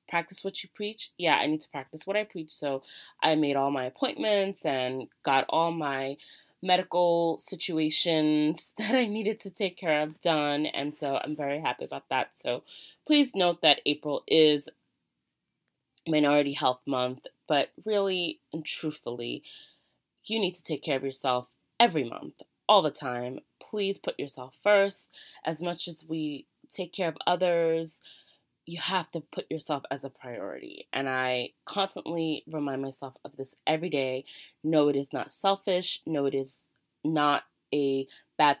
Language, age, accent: English, 20-39, American